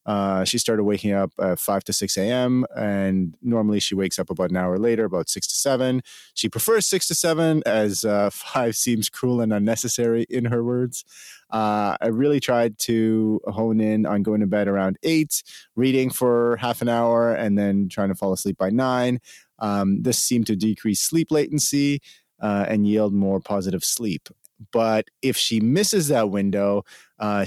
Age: 30-49